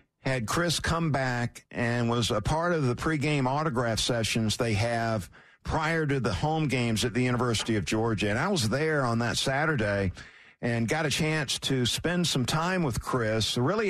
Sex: male